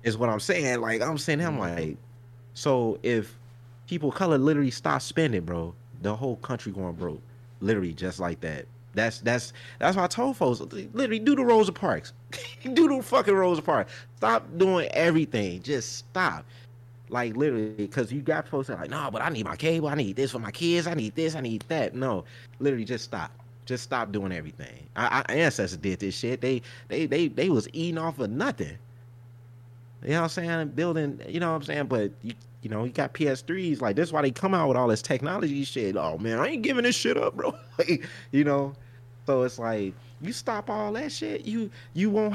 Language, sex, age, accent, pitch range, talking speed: English, male, 30-49, American, 120-165 Hz, 215 wpm